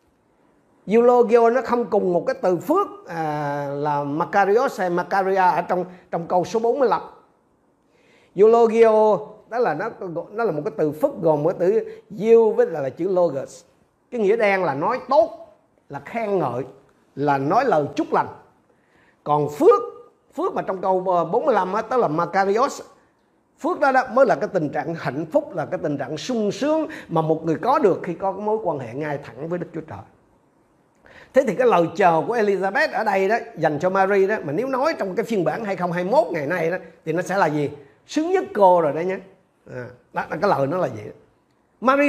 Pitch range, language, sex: 170-250 Hz, Vietnamese, male